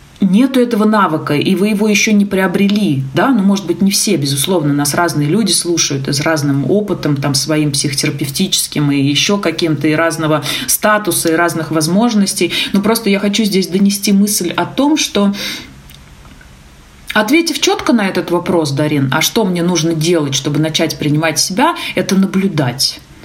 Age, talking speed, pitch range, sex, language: 30-49, 165 wpm, 150-210 Hz, female, Russian